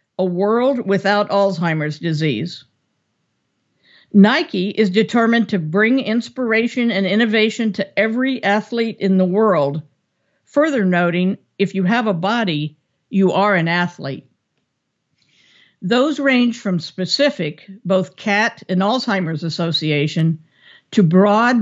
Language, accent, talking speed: English, American, 115 wpm